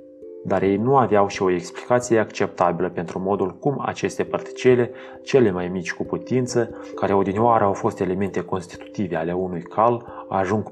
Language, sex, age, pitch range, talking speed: Romanian, male, 30-49, 85-115 Hz, 155 wpm